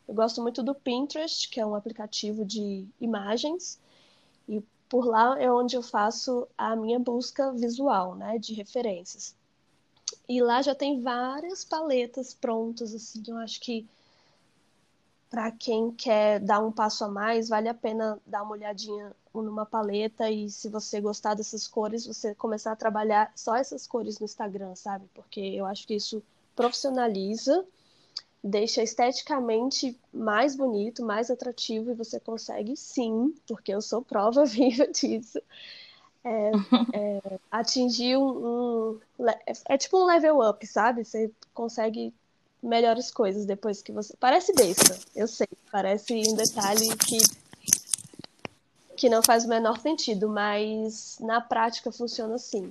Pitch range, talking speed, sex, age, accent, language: 210-245 Hz, 145 wpm, female, 20-39, Brazilian, Portuguese